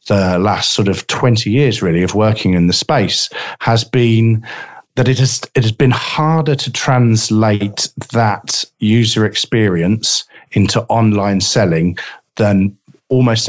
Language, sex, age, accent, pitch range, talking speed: English, male, 40-59, British, 95-120 Hz, 140 wpm